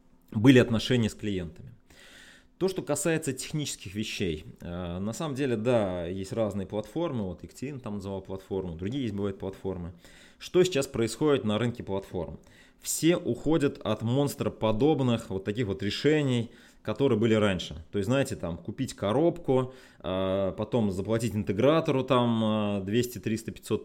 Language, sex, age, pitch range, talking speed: Russian, male, 20-39, 100-130 Hz, 135 wpm